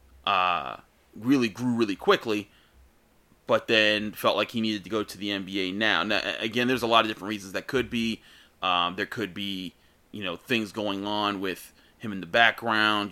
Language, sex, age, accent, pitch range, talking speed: English, male, 30-49, American, 90-110 Hz, 190 wpm